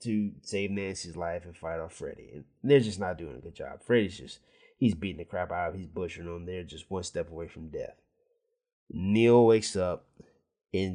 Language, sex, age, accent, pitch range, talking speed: English, male, 30-49, American, 90-120 Hz, 210 wpm